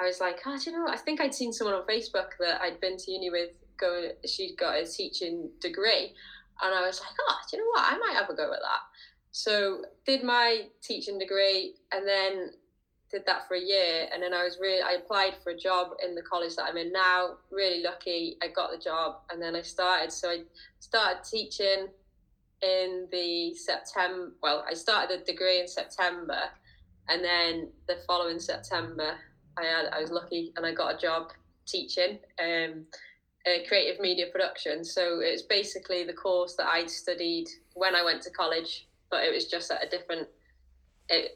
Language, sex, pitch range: English, female, 170-205 Hz